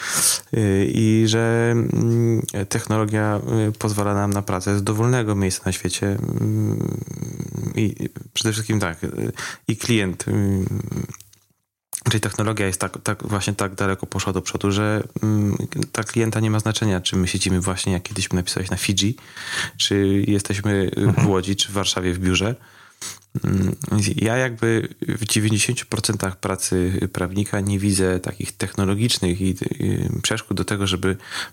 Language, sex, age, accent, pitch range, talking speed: Polish, male, 30-49, native, 95-110 Hz, 125 wpm